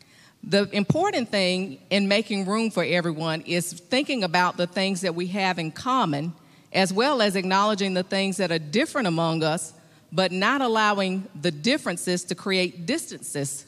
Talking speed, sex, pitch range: 160 wpm, female, 170-225 Hz